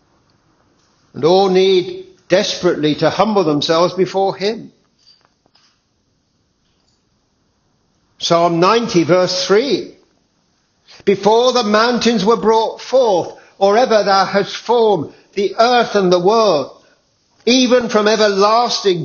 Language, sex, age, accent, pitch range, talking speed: English, male, 60-79, British, 155-210 Hz, 100 wpm